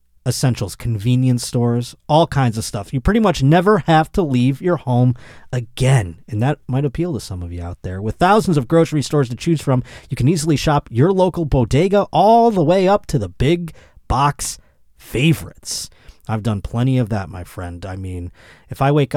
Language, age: English, 30-49